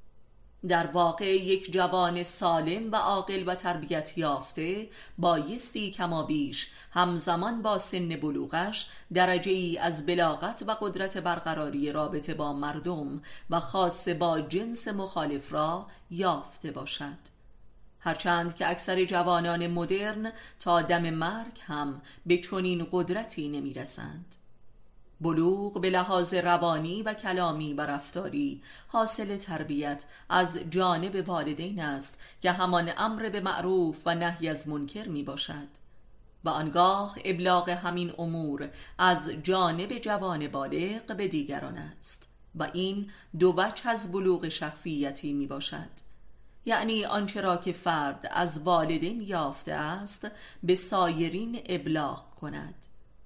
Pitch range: 155-185 Hz